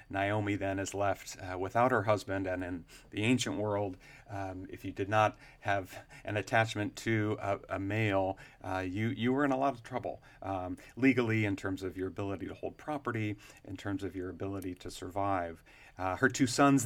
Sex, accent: male, American